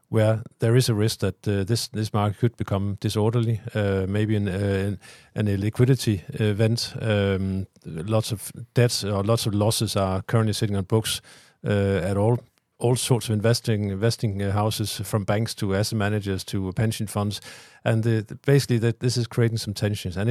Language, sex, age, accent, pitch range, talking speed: English, male, 50-69, Danish, 105-125 Hz, 185 wpm